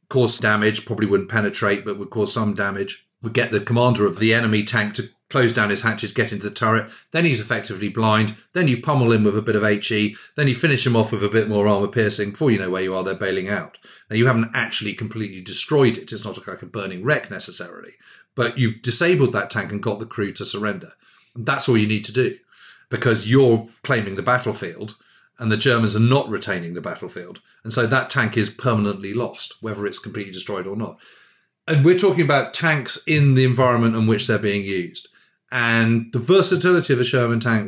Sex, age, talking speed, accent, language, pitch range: male, 40-59, 220 wpm, British, English, 105-125 Hz